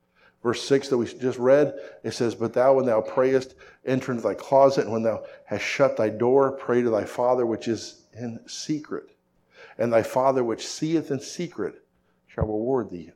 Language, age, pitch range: English, 50-69, 85-125 Hz